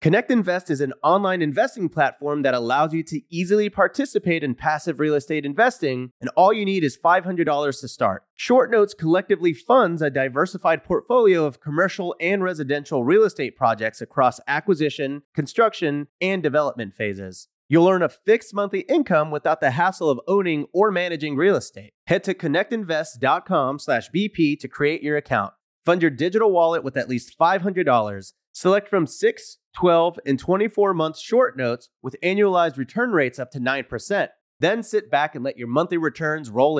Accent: American